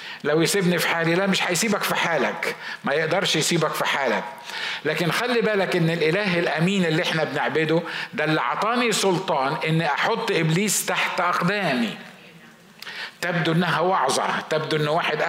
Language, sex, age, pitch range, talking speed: Arabic, male, 50-69, 160-200 Hz, 150 wpm